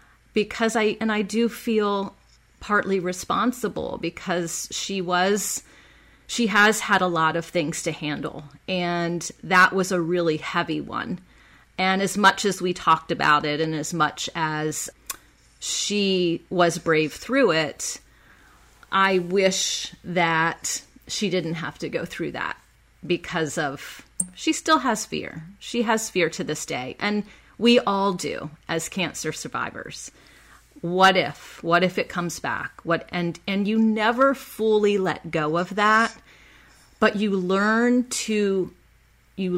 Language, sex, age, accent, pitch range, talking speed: English, female, 30-49, American, 175-215 Hz, 145 wpm